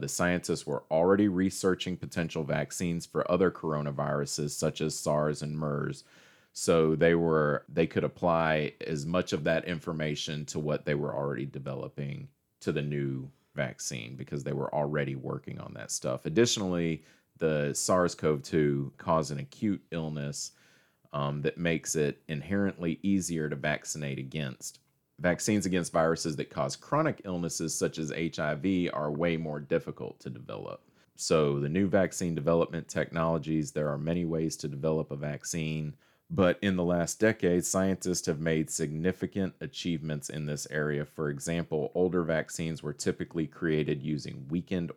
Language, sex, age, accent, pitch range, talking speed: English, male, 30-49, American, 75-85 Hz, 150 wpm